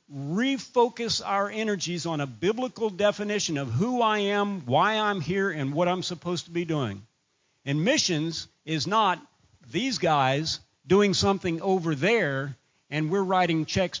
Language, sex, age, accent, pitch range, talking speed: English, male, 50-69, American, 130-195 Hz, 150 wpm